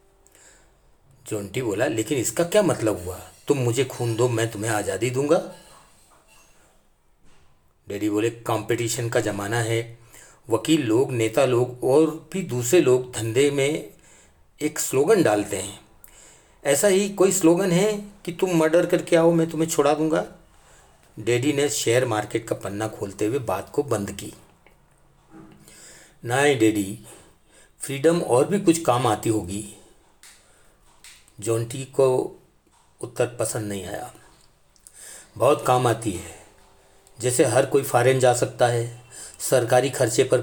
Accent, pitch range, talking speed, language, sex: native, 110-150 Hz, 135 wpm, Hindi, male